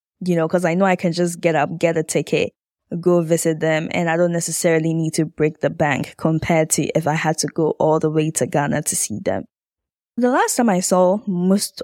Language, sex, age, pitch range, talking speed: English, female, 10-29, 160-200 Hz, 235 wpm